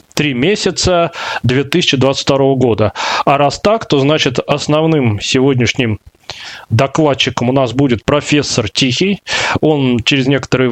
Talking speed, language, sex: 110 wpm, Russian, male